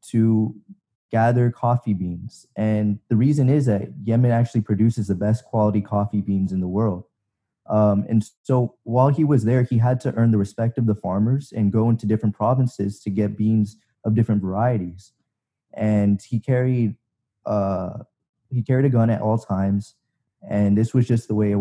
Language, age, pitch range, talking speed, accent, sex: English, 20-39, 100-115 Hz, 180 wpm, American, male